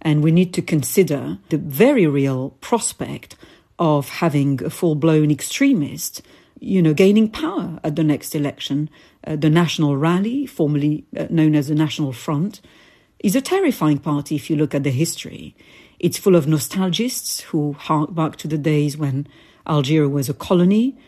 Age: 50-69